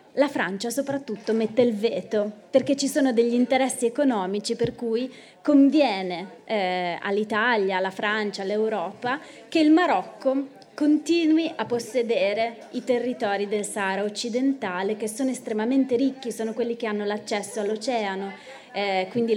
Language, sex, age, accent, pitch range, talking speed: Italian, female, 20-39, native, 210-260 Hz, 130 wpm